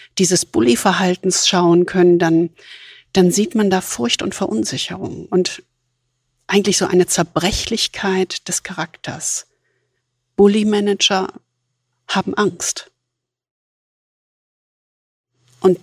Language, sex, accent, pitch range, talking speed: German, female, German, 175-215 Hz, 95 wpm